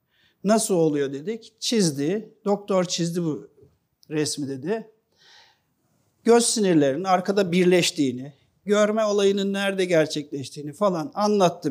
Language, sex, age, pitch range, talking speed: Turkish, male, 60-79, 175-230 Hz, 95 wpm